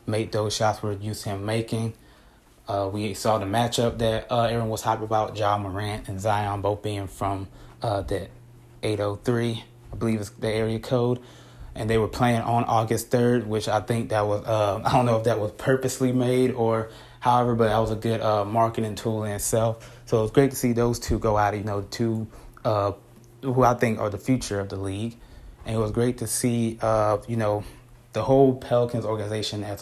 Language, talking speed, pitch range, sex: English, 210 wpm, 100-115 Hz, male